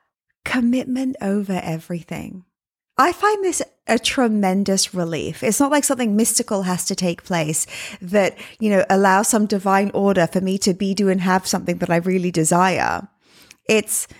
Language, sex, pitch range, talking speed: English, female, 175-220 Hz, 160 wpm